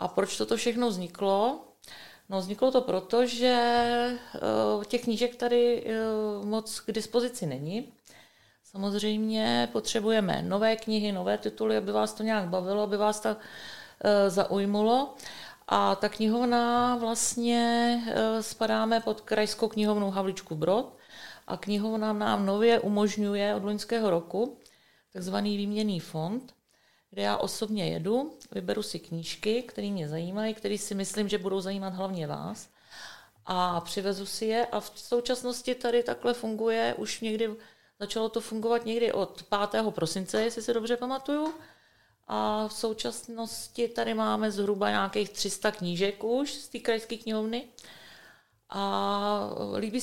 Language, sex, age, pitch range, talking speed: Czech, female, 40-59, 195-235 Hz, 130 wpm